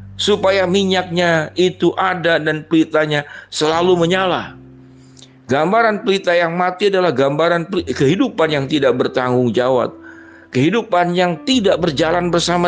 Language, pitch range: Indonesian, 135-180 Hz